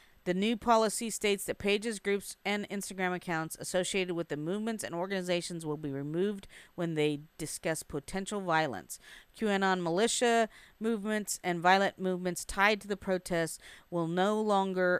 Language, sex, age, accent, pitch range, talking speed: English, female, 40-59, American, 160-190 Hz, 150 wpm